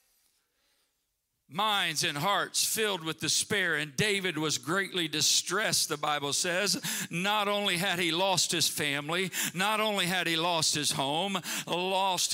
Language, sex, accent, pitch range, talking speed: English, male, American, 170-230 Hz, 140 wpm